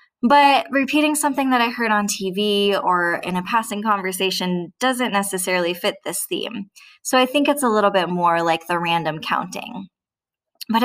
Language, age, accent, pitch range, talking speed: English, 10-29, American, 185-250 Hz, 170 wpm